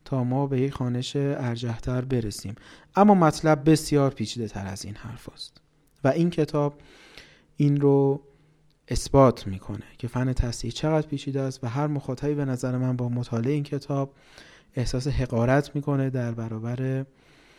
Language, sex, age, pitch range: Persian, male, 30-49, 115-140 Hz